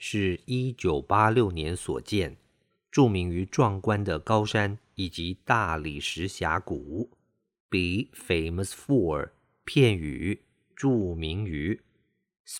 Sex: male